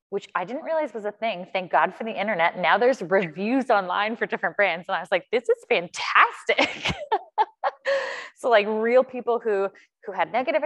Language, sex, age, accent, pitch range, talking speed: English, female, 20-39, American, 180-250 Hz, 190 wpm